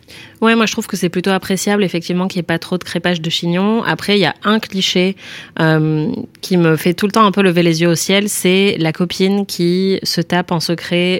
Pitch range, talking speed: 160-190 Hz, 245 wpm